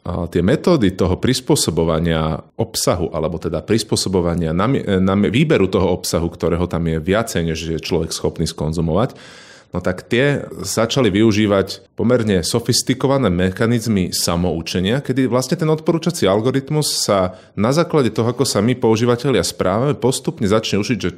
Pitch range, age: 85-120 Hz, 30-49